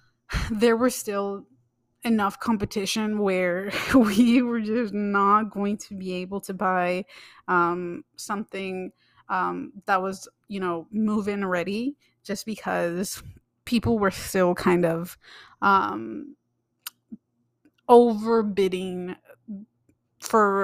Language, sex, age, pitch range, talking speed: English, female, 30-49, 185-220 Hz, 100 wpm